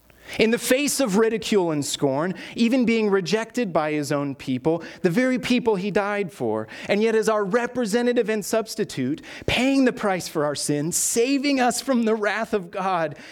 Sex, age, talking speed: male, 30-49, 180 wpm